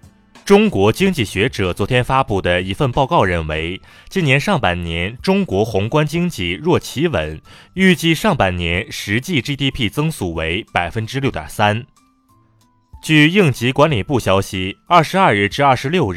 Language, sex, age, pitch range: Chinese, male, 30-49, 90-150 Hz